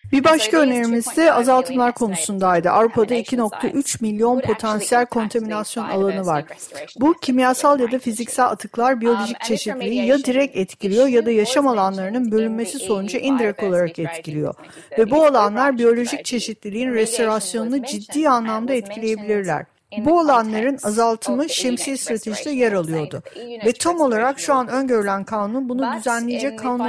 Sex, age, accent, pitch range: female, 50-69, native, 210-270 Hz